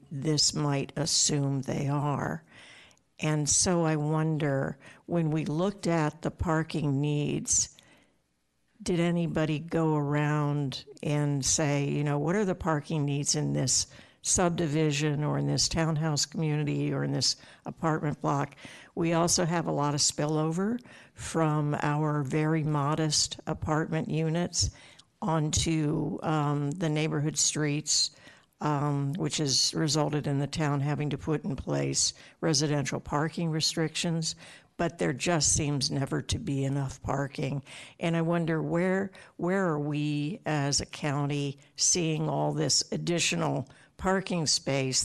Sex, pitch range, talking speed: female, 145-160 Hz, 135 wpm